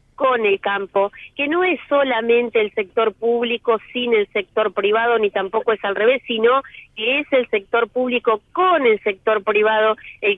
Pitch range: 205-240 Hz